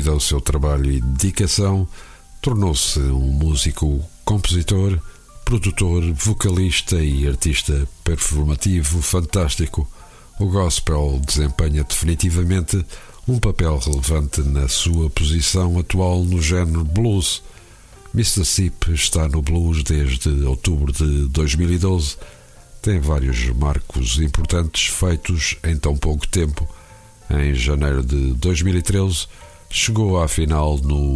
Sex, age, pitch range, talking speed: male, 50-69, 75-95 Hz, 105 wpm